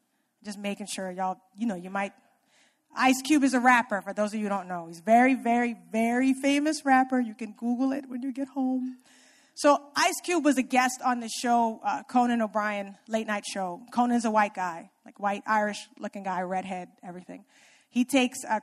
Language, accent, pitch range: English, American, 225-295 Hz